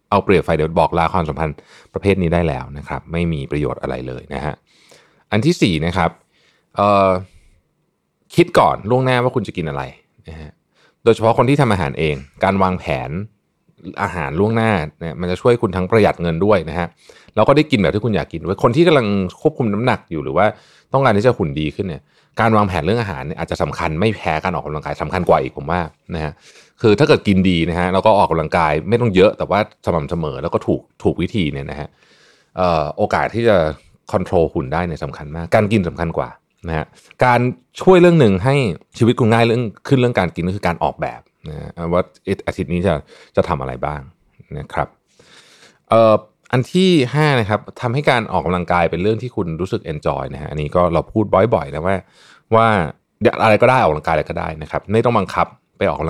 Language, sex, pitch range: Thai, male, 80-115 Hz